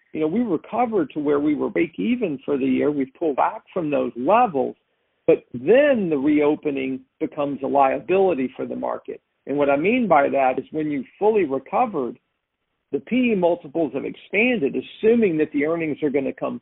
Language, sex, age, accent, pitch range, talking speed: English, male, 50-69, American, 145-190 Hz, 190 wpm